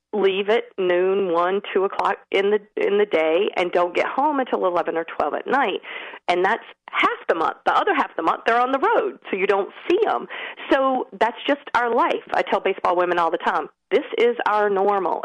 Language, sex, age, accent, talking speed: English, female, 40-59, American, 250 wpm